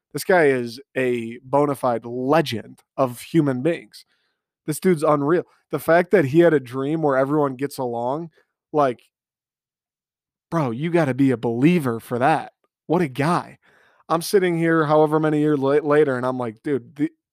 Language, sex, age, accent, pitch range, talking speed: English, male, 20-39, American, 125-150 Hz, 170 wpm